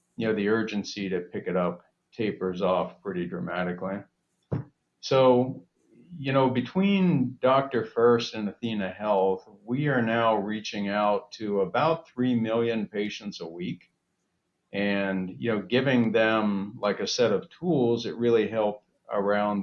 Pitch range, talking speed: 100-120 Hz, 145 wpm